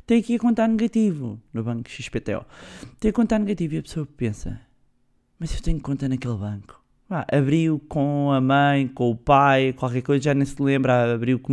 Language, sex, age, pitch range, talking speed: Portuguese, male, 20-39, 130-160 Hz, 195 wpm